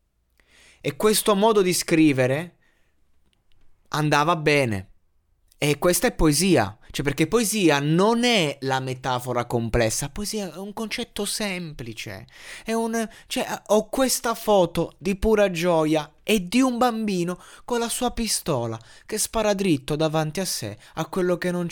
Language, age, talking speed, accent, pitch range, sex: Italian, 20-39, 140 wpm, native, 135-190 Hz, male